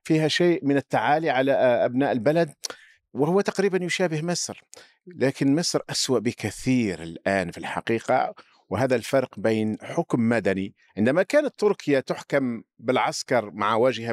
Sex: male